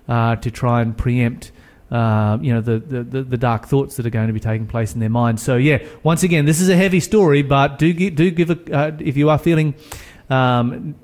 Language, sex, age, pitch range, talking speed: English, male, 30-49, 115-155 Hz, 235 wpm